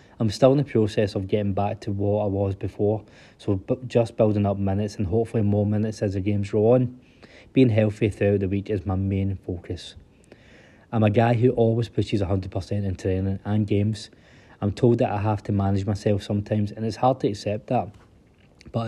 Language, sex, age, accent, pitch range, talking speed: English, male, 20-39, British, 100-115 Hz, 200 wpm